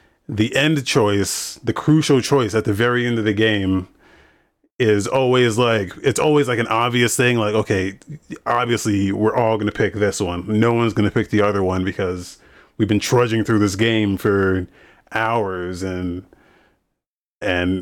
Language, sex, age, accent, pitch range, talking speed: English, male, 30-49, American, 105-130 Hz, 170 wpm